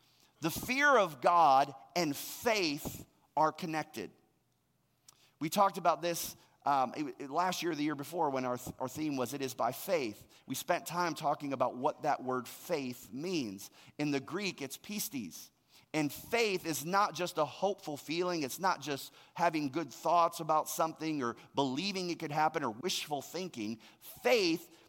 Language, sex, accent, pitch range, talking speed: English, male, American, 140-185 Hz, 165 wpm